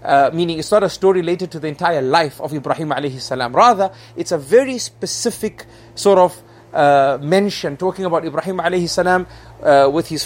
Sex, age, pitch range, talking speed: male, 30-49, 155-195 Hz, 170 wpm